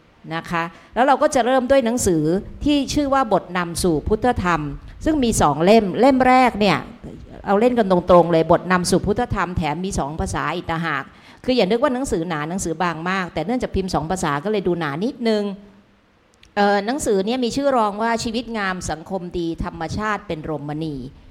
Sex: female